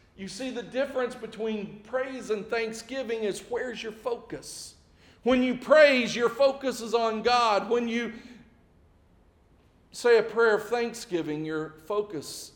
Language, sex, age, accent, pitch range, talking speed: English, male, 50-69, American, 140-220 Hz, 140 wpm